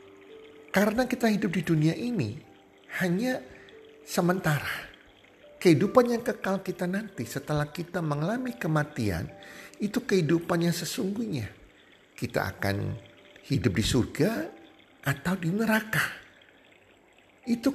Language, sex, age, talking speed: Indonesian, male, 50-69, 100 wpm